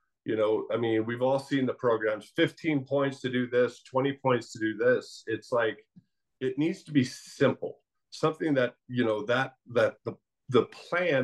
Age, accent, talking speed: 40-59, American, 185 wpm